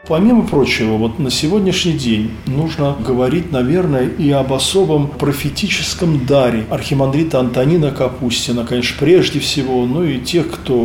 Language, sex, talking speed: Russian, male, 135 wpm